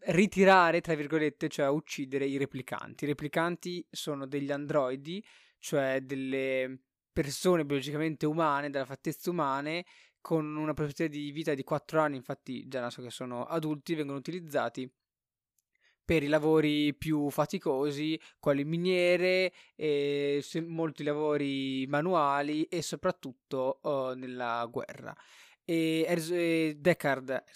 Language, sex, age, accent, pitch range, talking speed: Italian, male, 20-39, native, 135-160 Hz, 130 wpm